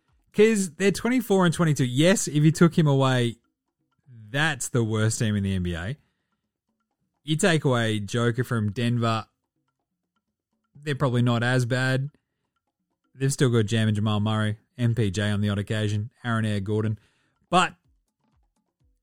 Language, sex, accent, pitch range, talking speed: English, male, Australian, 110-160 Hz, 140 wpm